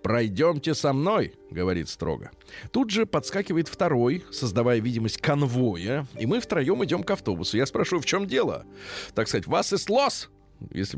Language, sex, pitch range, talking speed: Russian, male, 105-160 Hz, 165 wpm